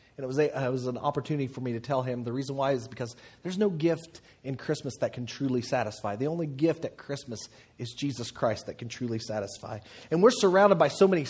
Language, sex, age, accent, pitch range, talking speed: English, male, 30-49, American, 125-170 Hz, 240 wpm